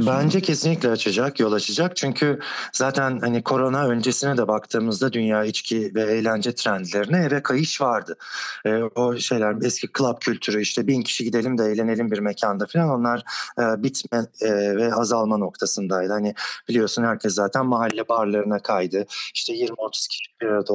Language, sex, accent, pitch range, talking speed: Turkish, male, native, 110-130 Hz, 155 wpm